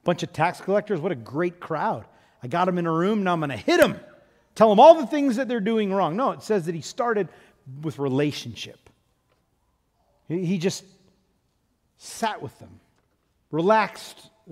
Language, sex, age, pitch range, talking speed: English, male, 40-59, 130-175 Hz, 180 wpm